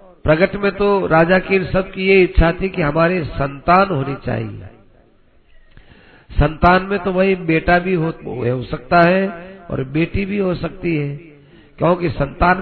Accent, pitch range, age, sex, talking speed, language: native, 140-185 Hz, 50-69, male, 150 wpm, Hindi